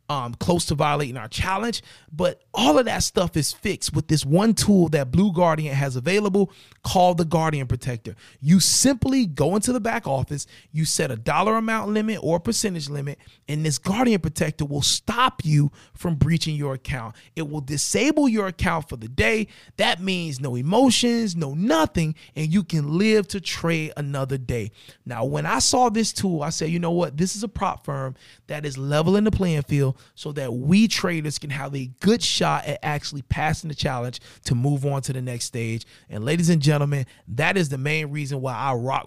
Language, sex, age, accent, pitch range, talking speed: English, male, 30-49, American, 135-180 Hz, 200 wpm